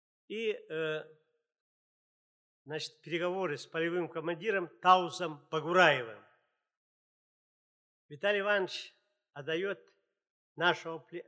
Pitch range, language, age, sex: 160-230 Hz, Russian, 50-69, male